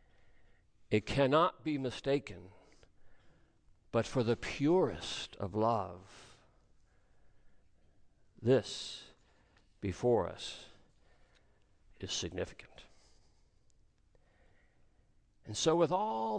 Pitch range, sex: 100-140 Hz, male